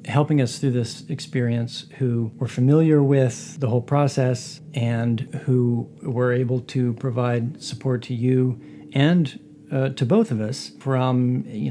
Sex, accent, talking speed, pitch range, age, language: male, American, 150 wpm, 120-140 Hz, 40-59, English